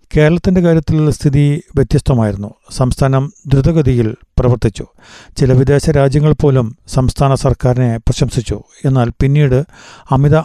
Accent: native